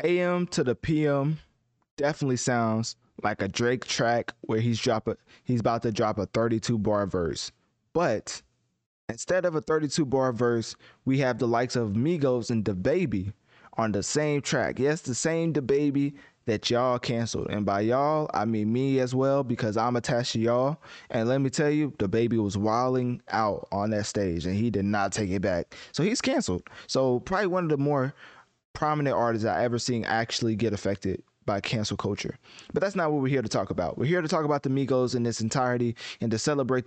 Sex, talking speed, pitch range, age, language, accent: male, 205 wpm, 110-135 Hz, 20-39, English, American